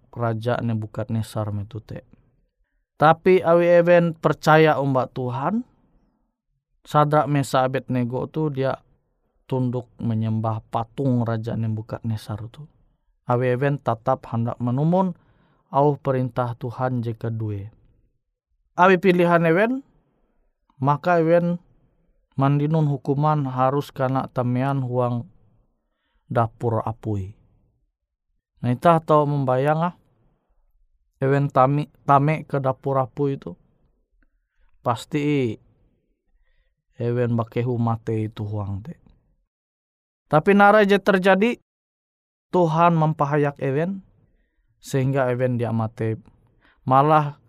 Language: Indonesian